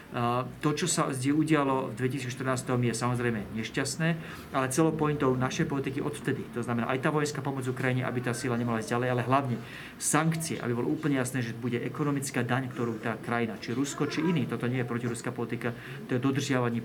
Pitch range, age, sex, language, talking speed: 120-135 Hz, 40-59, male, Slovak, 195 wpm